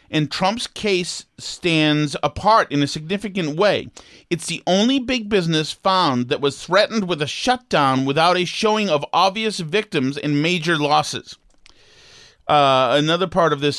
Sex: male